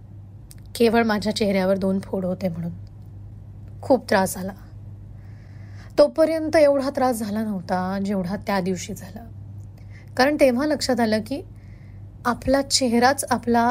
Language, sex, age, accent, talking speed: Marathi, female, 20-39, native, 90 wpm